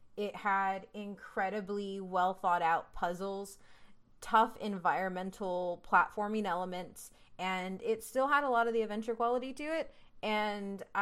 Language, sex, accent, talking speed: English, female, American, 130 wpm